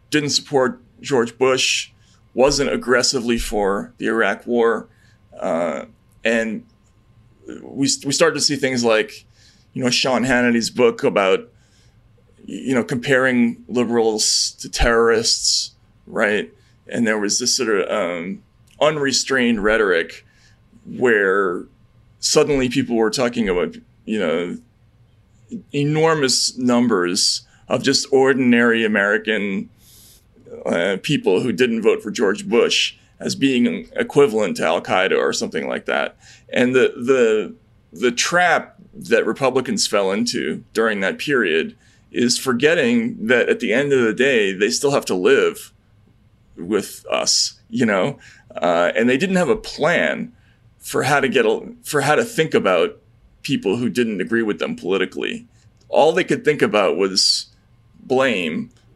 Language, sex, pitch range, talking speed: English, male, 115-145 Hz, 135 wpm